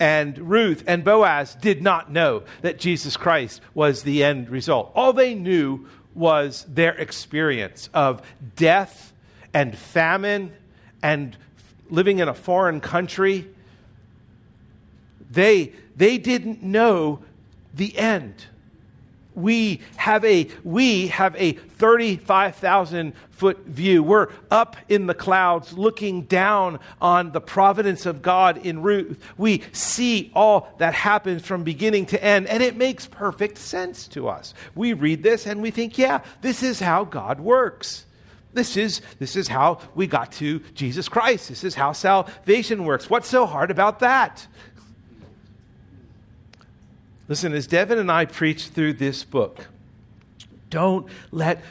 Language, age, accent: English, 50-69, American